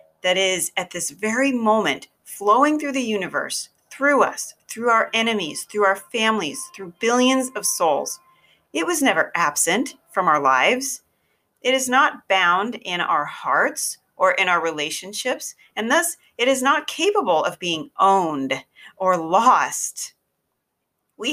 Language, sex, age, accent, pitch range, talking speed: English, female, 40-59, American, 170-245 Hz, 145 wpm